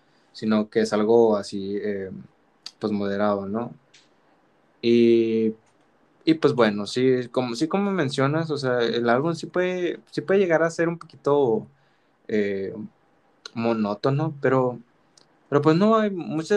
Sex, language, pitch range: male, Spanish, 110-130 Hz